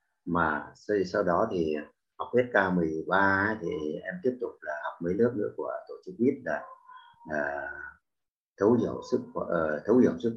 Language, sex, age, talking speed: Vietnamese, male, 30-49, 170 wpm